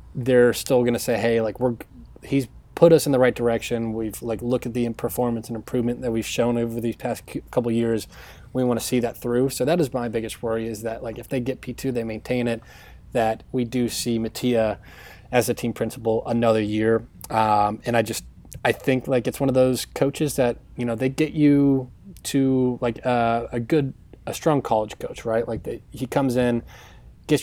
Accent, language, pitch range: American, English, 115-130 Hz